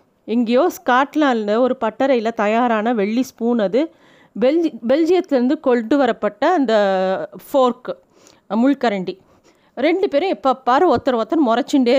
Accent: native